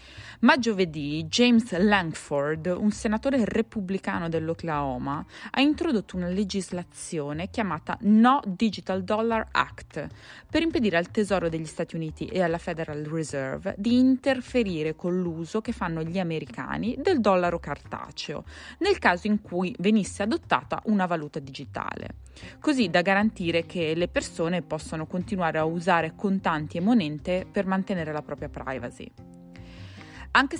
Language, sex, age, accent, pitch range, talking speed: Italian, female, 20-39, native, 155-210 Hz, 130 wpm